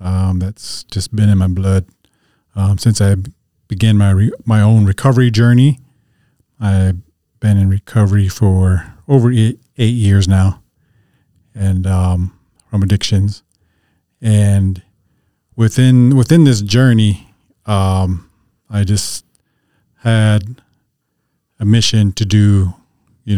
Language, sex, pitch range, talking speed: English, male, 95-110 Hz, 115 wpm